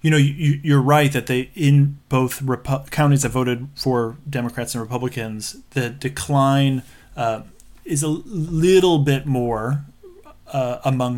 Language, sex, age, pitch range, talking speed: English, male, 30-49, 120-145 Hz, 140 wpm